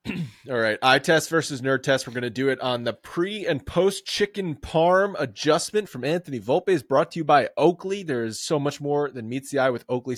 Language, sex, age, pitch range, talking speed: English, male, 30-49, 130-165 Hz, 235 wpm